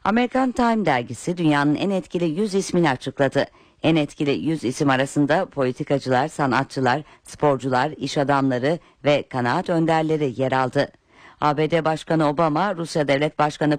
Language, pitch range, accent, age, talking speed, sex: Turkish, 140-185 Hz, native, 60-79, 130 wpm, female